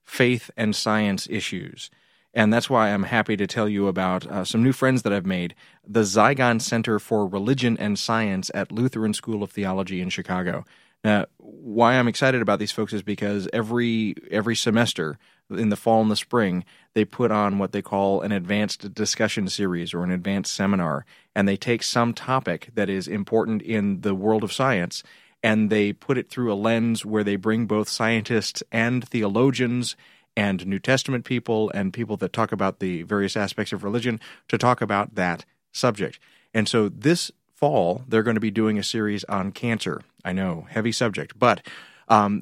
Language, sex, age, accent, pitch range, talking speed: English, male, 30-49, American, 105-120 Hz, 185 wpm